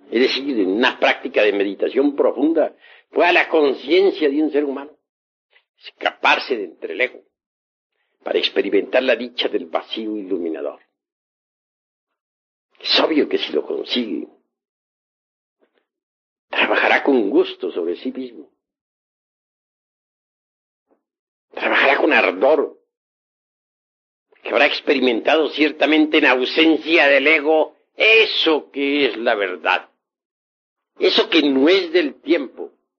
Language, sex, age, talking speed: Spanish, male, 60-79, 110 wpm